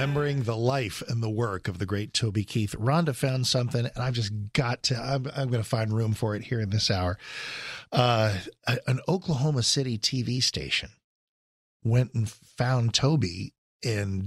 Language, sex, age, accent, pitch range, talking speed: English, male, 50-69, American, 100-130 Hz, 175 wpm